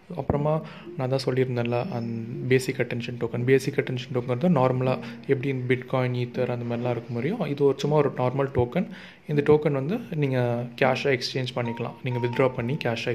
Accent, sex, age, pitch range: native, male, 30-49, 120-135 Hz